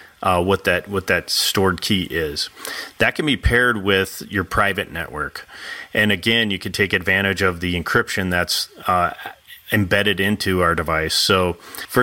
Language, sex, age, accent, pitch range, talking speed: English, male, 30-49, American, 90-105 Hz, 165 wpm